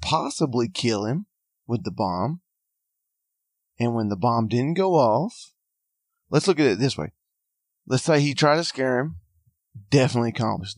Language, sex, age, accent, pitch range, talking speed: English, male, 30-49, American, 105-130 Hz, 155 wpm